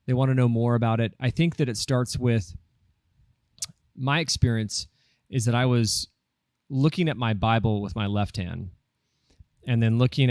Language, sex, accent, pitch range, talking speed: English, male, American, 105-130 Hz, 175 wpm